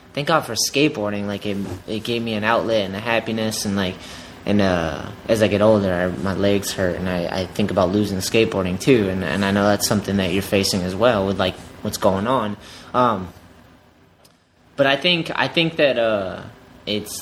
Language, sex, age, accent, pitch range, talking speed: English, male, 20-39, American, 100-125 Hz, 210 wpm